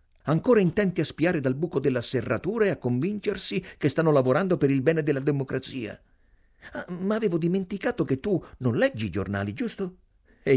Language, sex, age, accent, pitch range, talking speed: Italian, male, 50-69, native, 100-165 Hz, 170 wpm